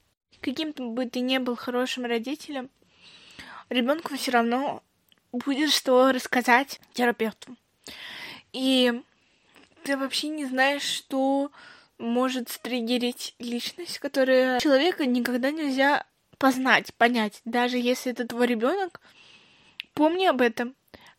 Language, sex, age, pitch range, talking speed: Russian, female, 20-39, 245-275 Hz, 110 wpm